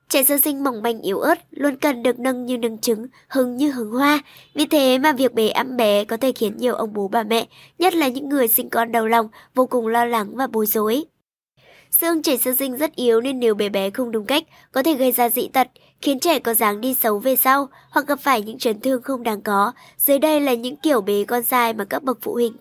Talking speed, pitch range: 255 wpm, 230-280 Hz